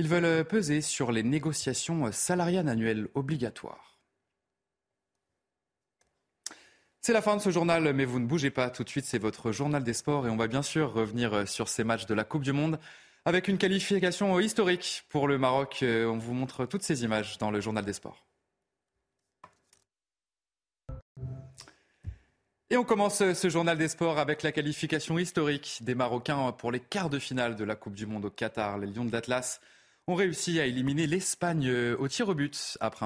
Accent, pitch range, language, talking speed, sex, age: French, 115-160 Hz, French, 180 wpm, male, 20-39